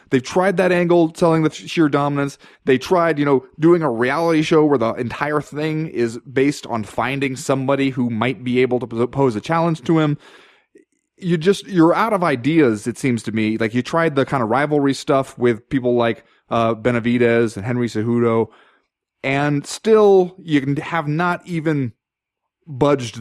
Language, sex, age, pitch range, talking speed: English, male, 30-49, 120-155 Hz, 175 wpm